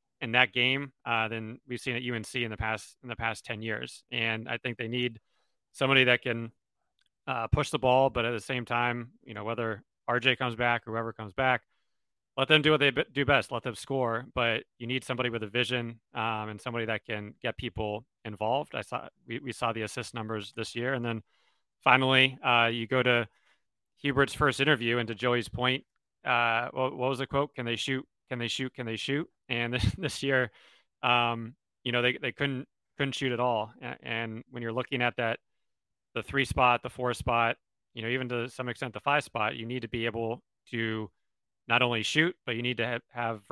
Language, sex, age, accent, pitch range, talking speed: English, male, 30-49, American, 115-130 Hz, 220 wpm